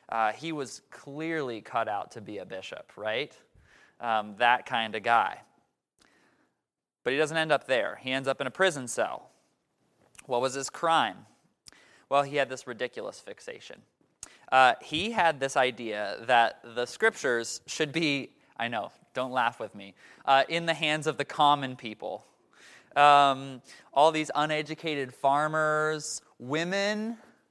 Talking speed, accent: 150 wpm, American